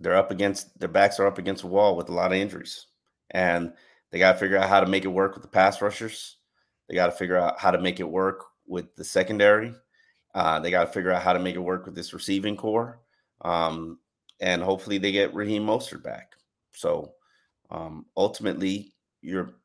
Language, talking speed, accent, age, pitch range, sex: English, 215 wpm, American, 30-49, 95-105 Hz, male